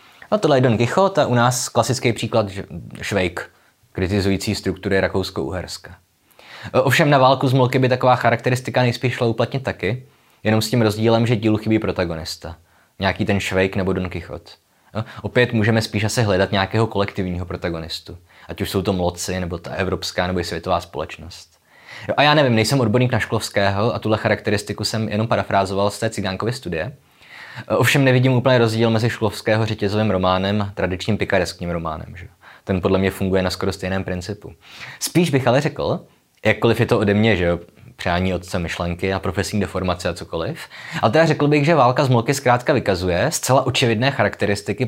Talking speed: 175 wpm